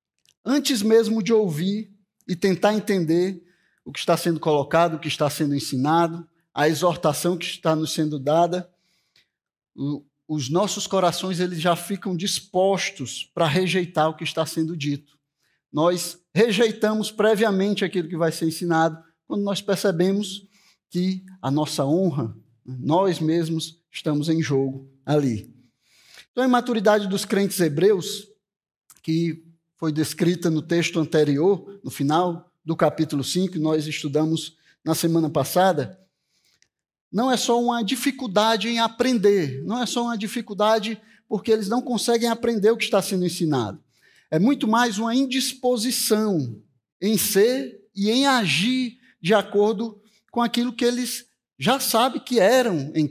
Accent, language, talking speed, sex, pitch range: Brazilian, Portuguese, 140 wpm, male, 160-220 Hz